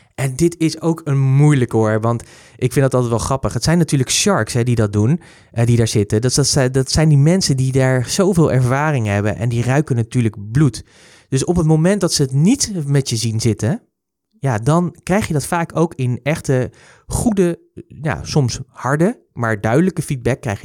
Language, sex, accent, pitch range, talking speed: Dutch, male, Dutch, 115-145 Hz, 200 wpm